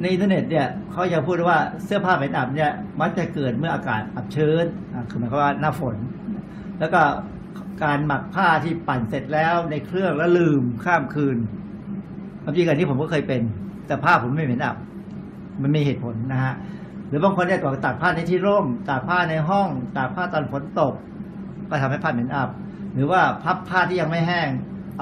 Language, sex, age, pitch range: Thai, male, 60-79, 140-185 Hz